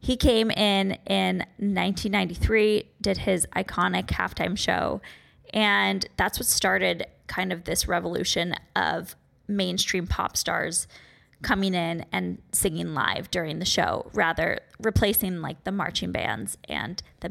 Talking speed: 130 wpm